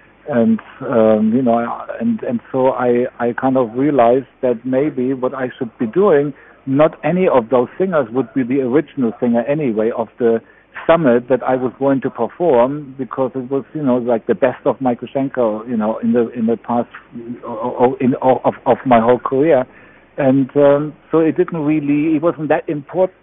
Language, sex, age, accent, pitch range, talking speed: English, male, 60-79, German, 120-150 Hz, 195 wpm